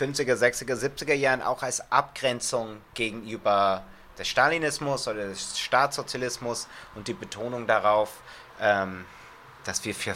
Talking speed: 125 wpm